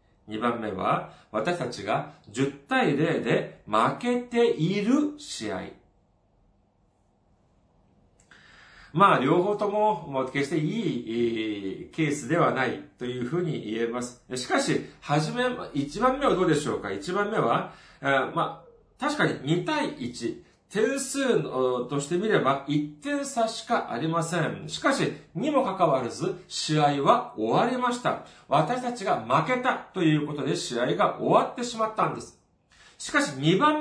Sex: male